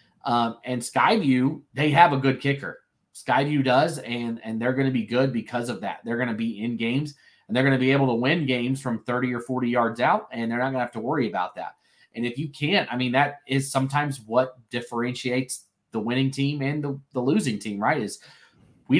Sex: male